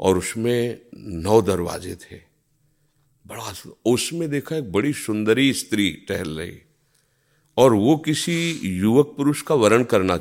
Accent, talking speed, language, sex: native, 130 wpm, Hindi, male